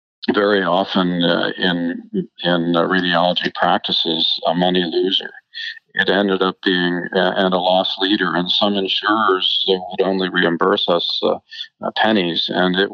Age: 50-69